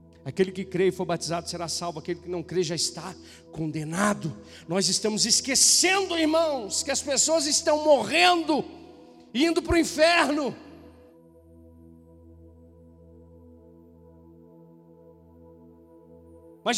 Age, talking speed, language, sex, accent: 50-69, 105 wpm, Portuguese, male, Brazilian